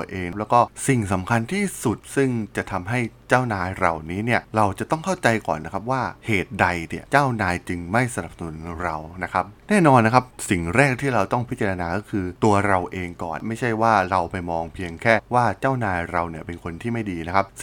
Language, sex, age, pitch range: Thai, male, 20-39, 95-120 Hz